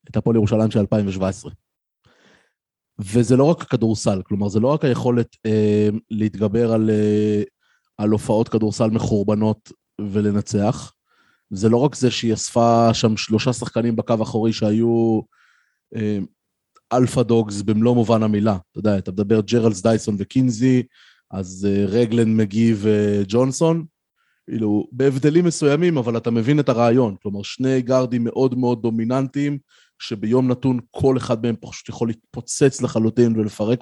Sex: male